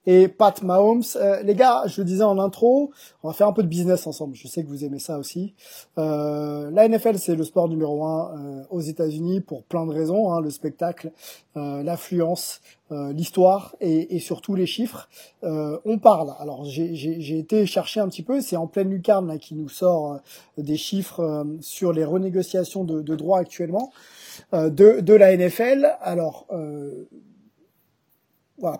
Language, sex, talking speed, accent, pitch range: French, male, 195 wpm, French, 155-200 Hz